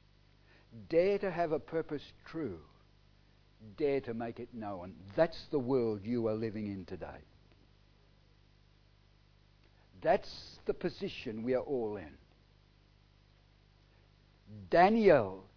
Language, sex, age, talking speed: English, male, 60-79, 105 wpm